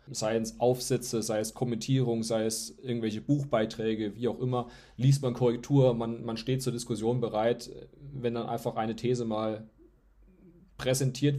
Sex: male